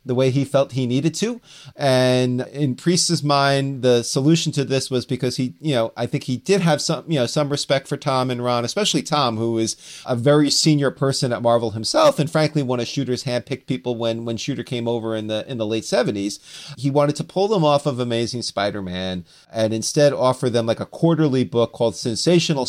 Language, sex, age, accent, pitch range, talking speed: English, male, 40-59, American, 115-150 Hz, 215 wpm